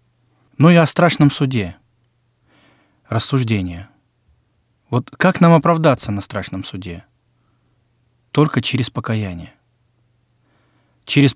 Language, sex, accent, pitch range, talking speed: Russian, male, native, 115-140 Hz, 90 wpm